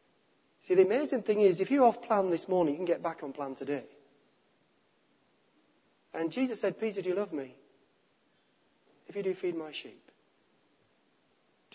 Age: 40-59